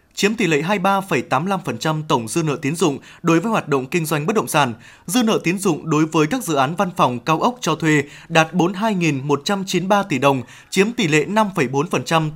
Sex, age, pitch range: male, 20-39, 150-195 Hz